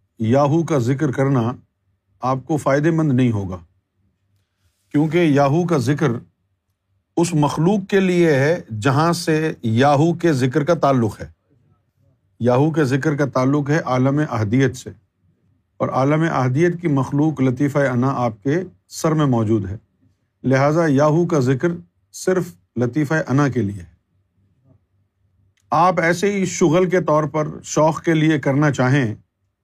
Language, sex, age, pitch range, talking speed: Urdu, male, 50-69, 100-155 Hz, 145 wpm